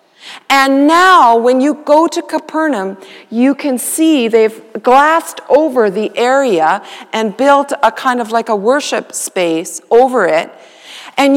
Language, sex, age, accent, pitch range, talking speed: English, female, 40-59, American, 270-350 Hz, 145 wpm